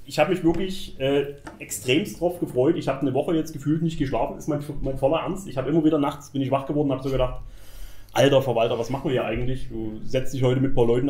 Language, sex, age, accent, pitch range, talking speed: German, male, 30-49, German, 120-150 Hz, 265 wpm